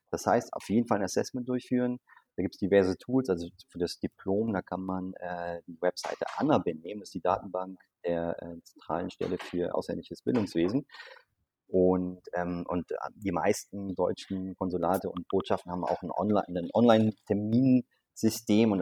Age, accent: 30-49, German